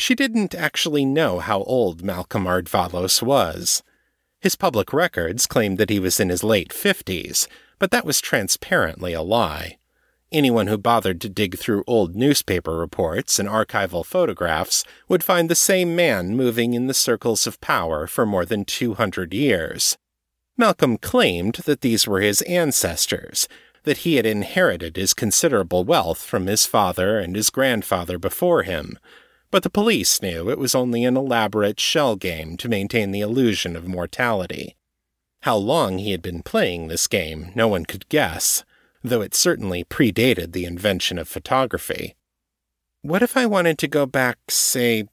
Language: English